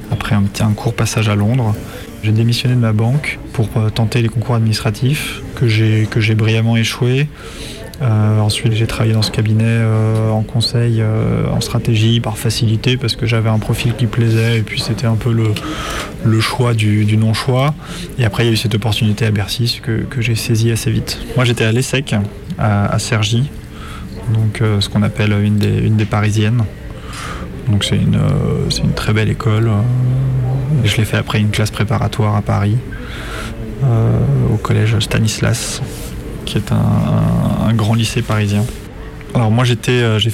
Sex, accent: male, French